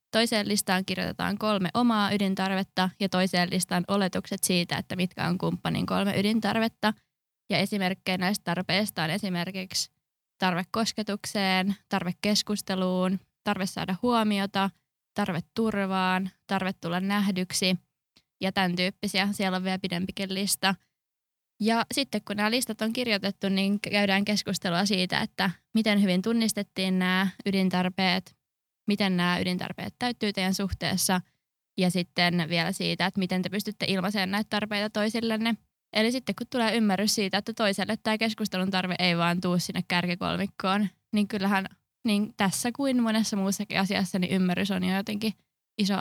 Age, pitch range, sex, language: 20-39, 185-210 Hz, female, Finnish